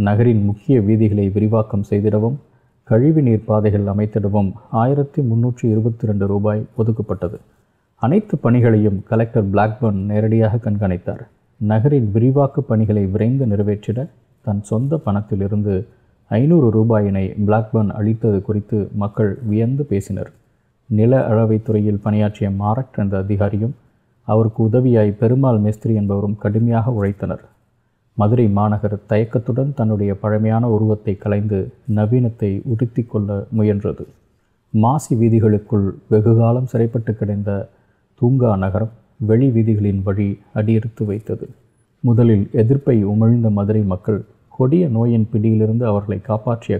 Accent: native